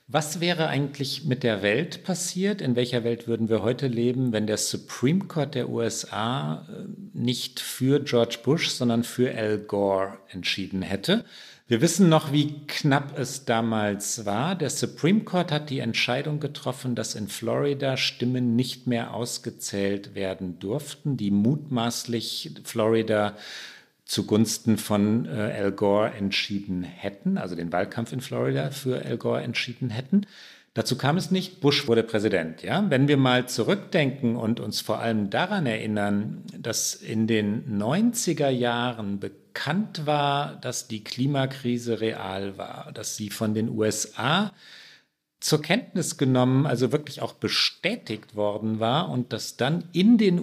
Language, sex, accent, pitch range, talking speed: German, male, German, 110-145 Hz, 145 wpm